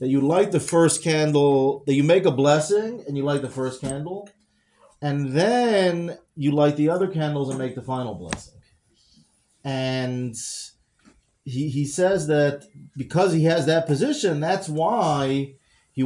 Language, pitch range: English, 135-165 Hz